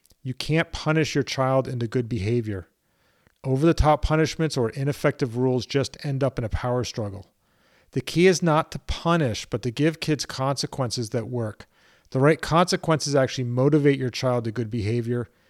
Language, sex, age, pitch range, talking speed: English, male, 40-59, 120-150 Hz, 165 wpm